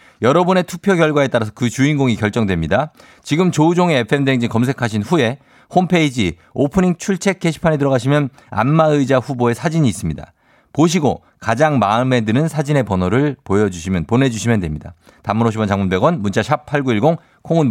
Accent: native